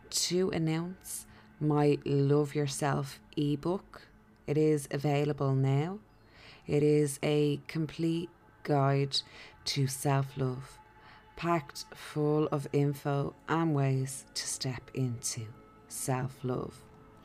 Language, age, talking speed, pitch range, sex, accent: English, 20-39, 95 wpm, 135-150 Hz, female, Irish